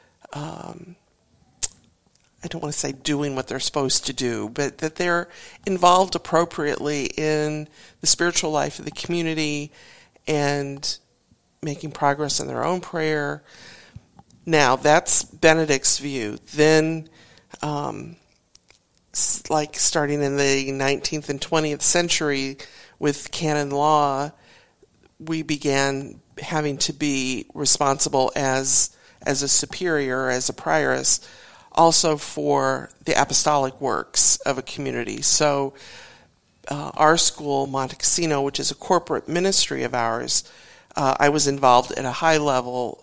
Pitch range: 135-155 Hz